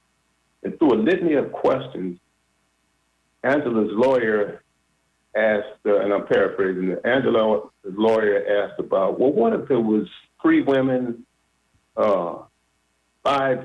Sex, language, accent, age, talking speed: male, English, American, 50-69, 120 wpm